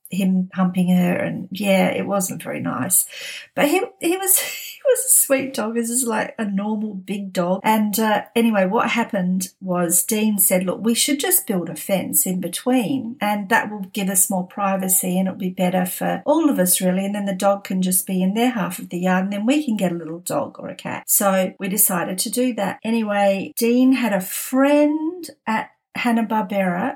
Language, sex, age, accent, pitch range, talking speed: English, female, 50-69, Australian, 190-230 Hz, 210 wpm